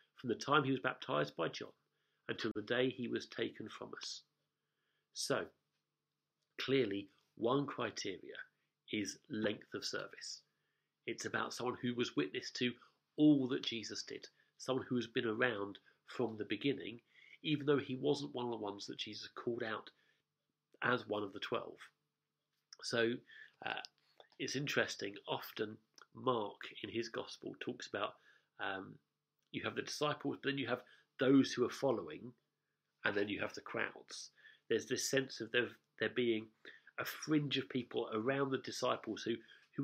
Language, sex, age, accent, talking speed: English, male, 40-59, British, 155 wpm